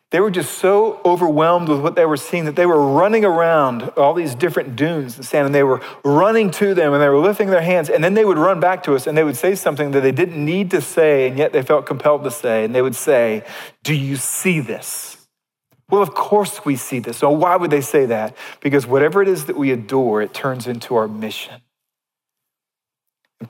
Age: 40-59